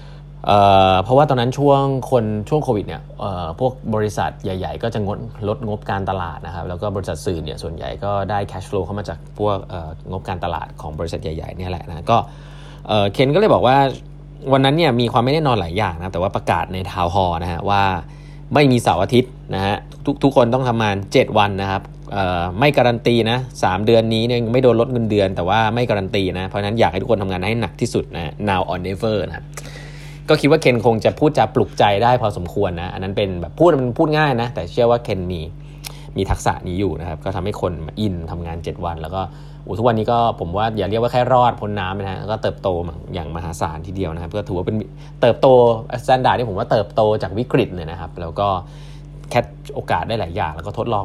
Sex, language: male, Thai